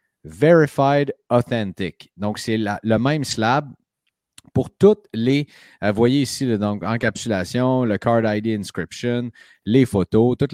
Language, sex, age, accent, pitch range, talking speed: French, male, 30-49, Canadian, 100-125 Hz, 160 wpm